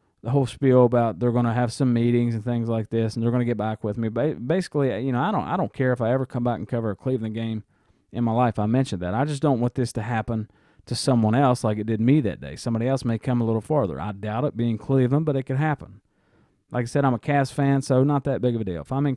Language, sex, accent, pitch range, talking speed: English, male, American, 110-130 Hz, 295 wpm